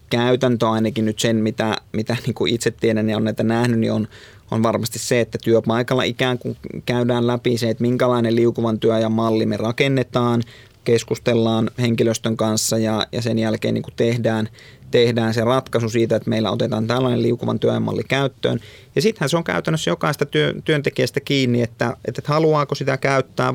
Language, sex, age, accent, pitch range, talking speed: Finnish, male, 30-49, native, 115-125 Hz, 170 wpm